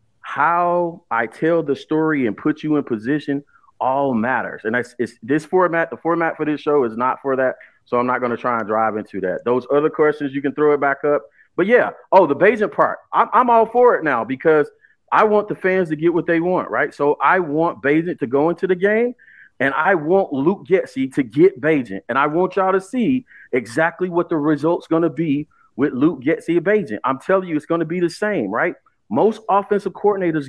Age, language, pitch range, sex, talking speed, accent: 30-49, English, 150-195 Hz, male, 230 wpm, American